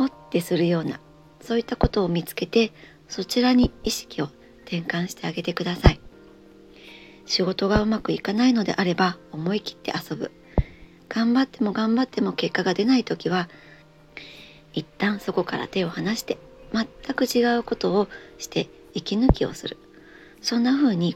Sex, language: male, Japanese